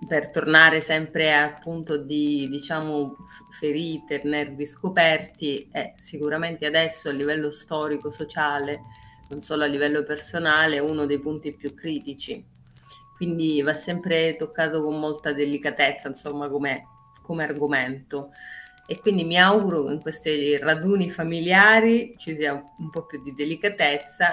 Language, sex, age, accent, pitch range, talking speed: Italian, female, 30-49, native, 145-165 Hz, 130 wpm